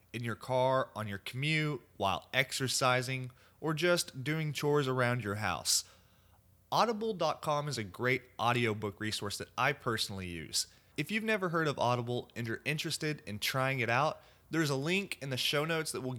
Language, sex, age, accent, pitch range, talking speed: English, male, 30-49, American, 110-155 Hz, 180 wpm